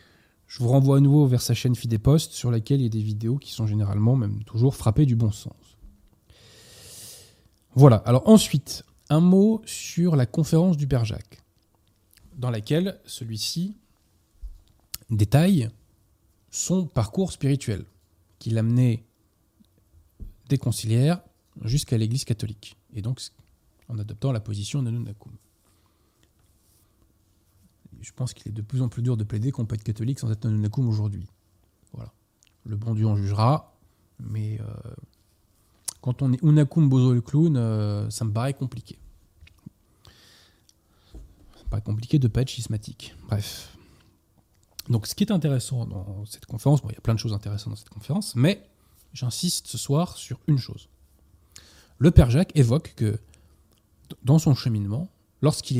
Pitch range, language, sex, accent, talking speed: 105-130 Hz, French, male, French, 155 wpm